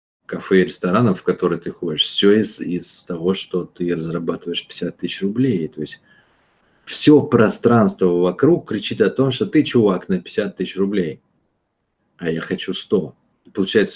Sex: male